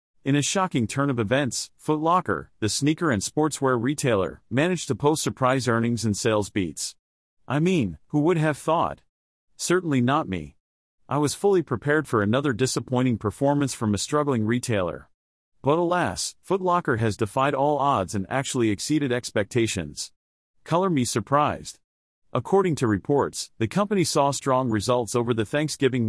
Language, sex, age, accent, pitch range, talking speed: English, male, 40-59, American, 115-145 Hz, 155 wpm